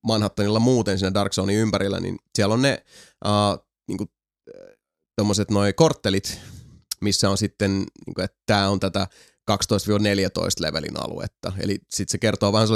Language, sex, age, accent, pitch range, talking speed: Finnish, male, 30-49, native, 100-125 Hz, 150 wpm